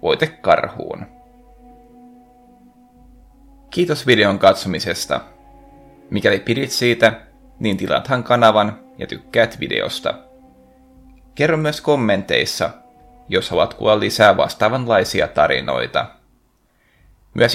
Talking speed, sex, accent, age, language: 80 wpm, male, native, 30-49, Finnish